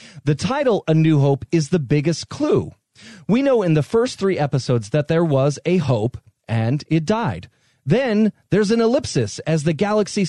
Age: 30-49